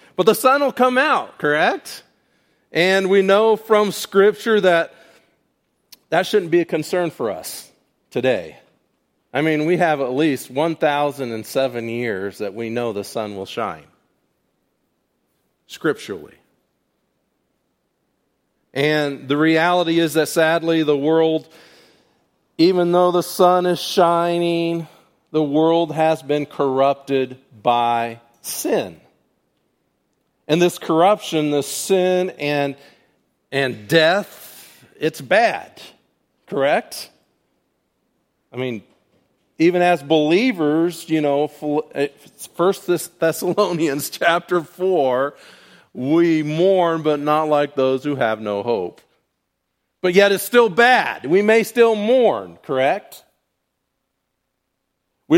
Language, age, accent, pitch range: English, 40-59, American, 145-180 Hz